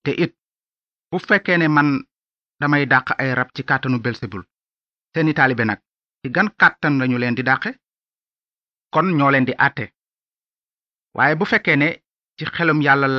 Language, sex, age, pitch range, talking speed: Italian, male, 30-49, 125-160 Hz, 100 wpm